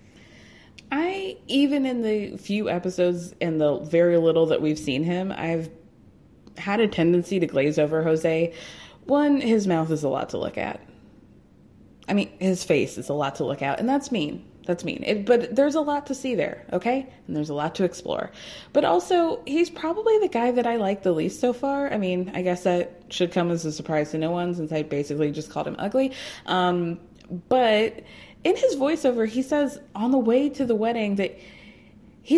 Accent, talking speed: American, 200 wpm